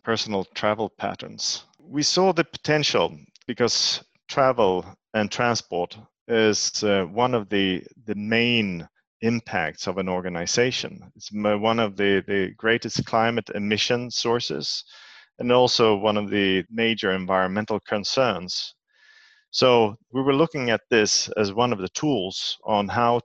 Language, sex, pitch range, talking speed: English, male, 95-120 Hz, 135 wpm